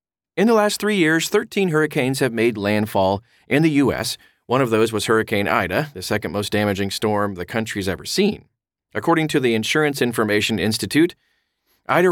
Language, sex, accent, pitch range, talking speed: English, male, American, 100-145 Hz, 175 wpm